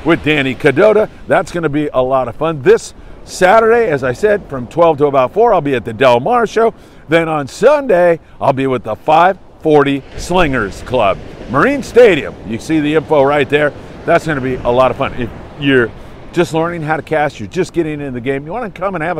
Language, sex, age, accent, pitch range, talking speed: English, male, 50-69, American, 125-160 Hz, 220 wpm